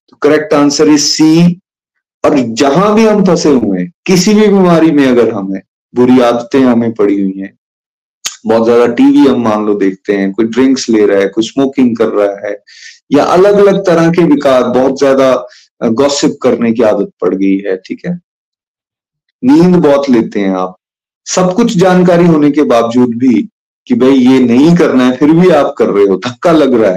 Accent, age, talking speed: native, 30-49, 190 wpm